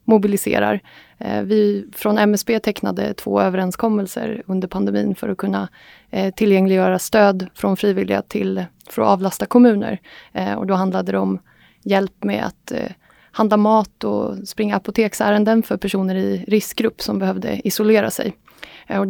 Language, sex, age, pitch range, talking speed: Swedish, female, 20-39, 190-220 Hz, 135 wpm